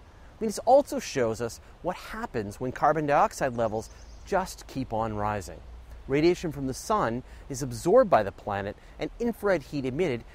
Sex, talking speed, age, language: male, 155 wpm, 30-49, English